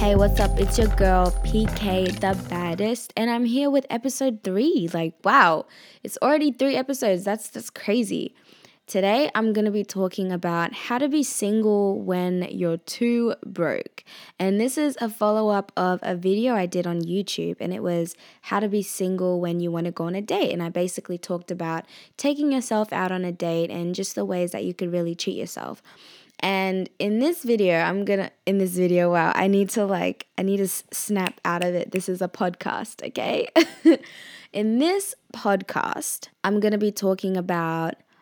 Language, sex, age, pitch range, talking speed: English, female, 10-29, 180-240 Hz, 195 wpm